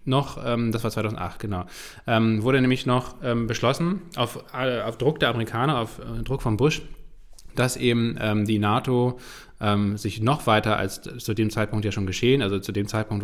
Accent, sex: German, male